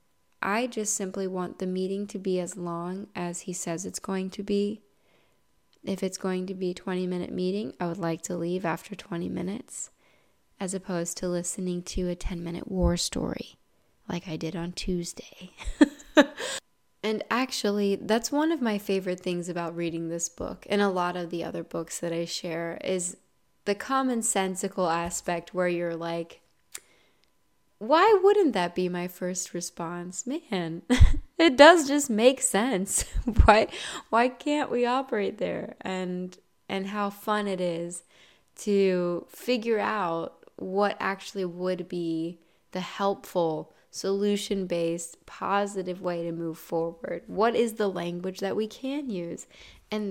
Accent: American